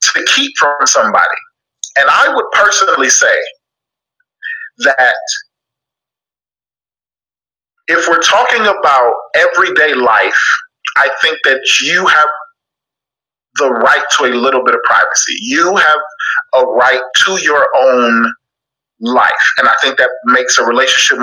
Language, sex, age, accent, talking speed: English, male, 30-49, American, 125 wpm